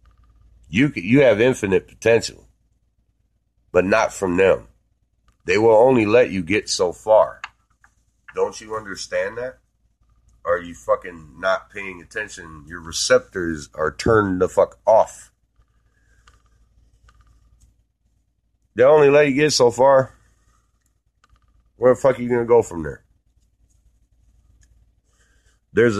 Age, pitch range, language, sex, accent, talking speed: 40-59, 90-125 Hz, English, male, American, 120 wpm